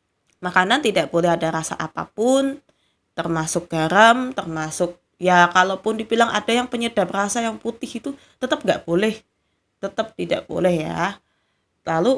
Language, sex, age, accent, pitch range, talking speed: Indonesian, female, 20-39, native, 165-215 Hz, 135 wpm